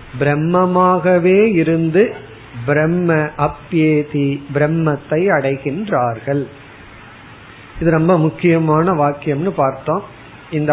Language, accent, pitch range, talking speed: Tamil, native, 135-175 Hz, 65 wpm